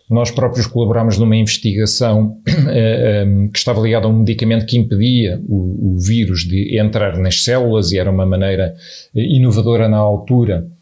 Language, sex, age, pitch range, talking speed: Portuguese, male, 40-59, 105-125 Hz, 165 wpm